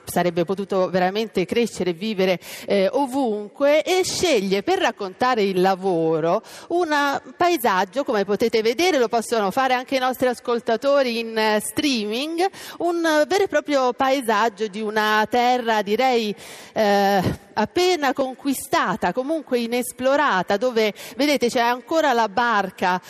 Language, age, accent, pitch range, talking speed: Italian, 40-59, native, 205-265 Hz, 130 wpm